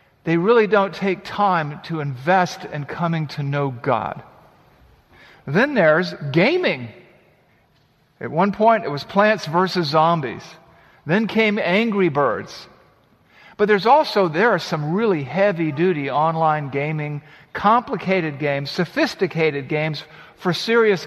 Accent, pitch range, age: American, 140-190 Hz, 50-69